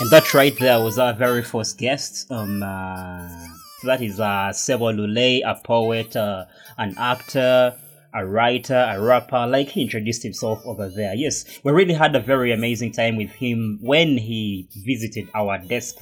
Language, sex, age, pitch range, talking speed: English, male, 20-39, 105-130 Hz, 170 wpm